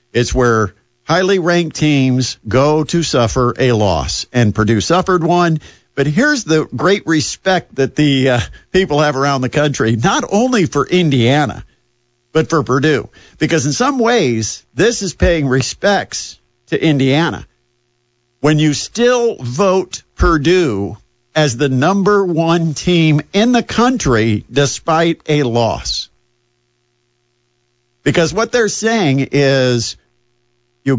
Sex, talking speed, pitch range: male, 130 wpm, 120-170 Hz